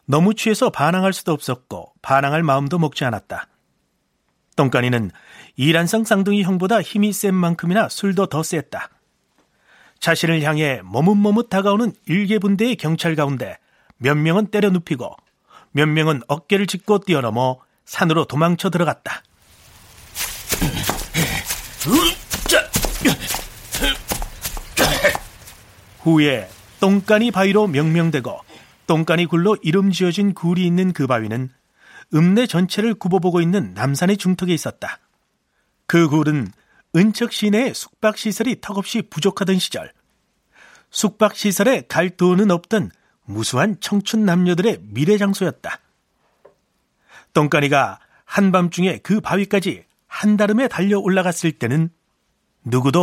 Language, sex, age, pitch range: Korean, male, 40-59, 150-200 Hz